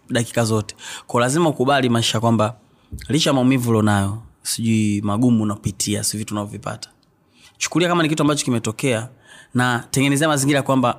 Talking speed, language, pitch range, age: 140 wpm, Swahili, 110-130 Hz, 30-49